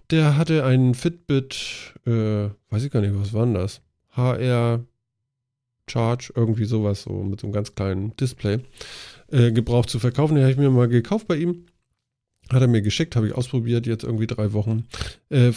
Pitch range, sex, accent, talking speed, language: 110-135 Hz, male, German, 175 wpm, German